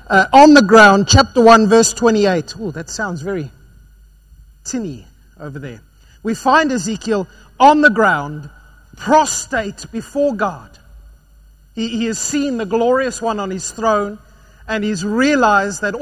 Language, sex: English, male